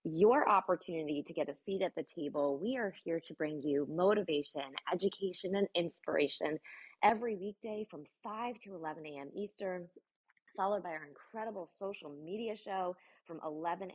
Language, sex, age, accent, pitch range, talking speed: English, female, 20-39, American, 160-195 Hz, 155 wpm